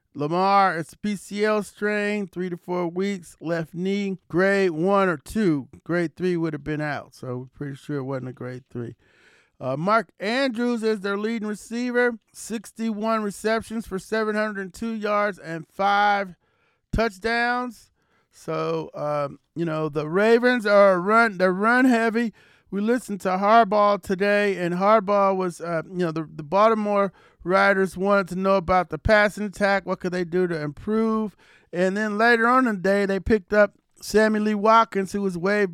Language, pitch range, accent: English, 170-210 Hz, American